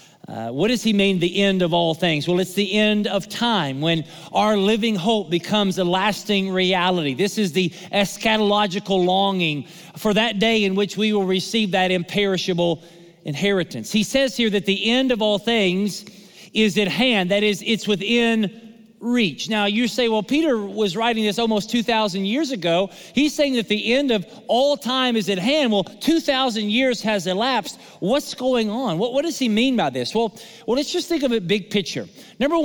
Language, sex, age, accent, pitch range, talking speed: English, male, 40-59, American, 185-225 Hz, 195 wpm